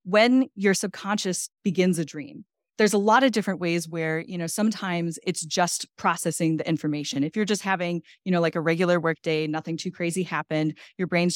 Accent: American